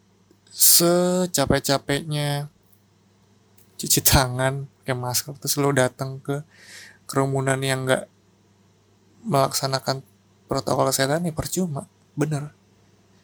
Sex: male